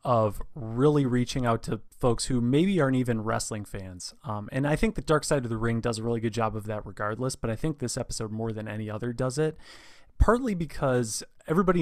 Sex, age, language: male, 30-49, English